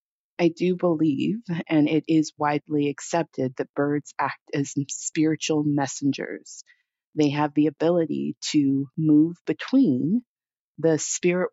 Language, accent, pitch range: English, American, 145-170 Hz